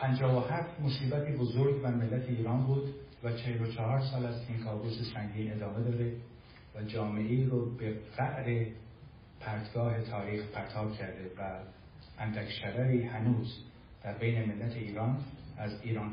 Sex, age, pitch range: male, 50-69, 110-125 Hz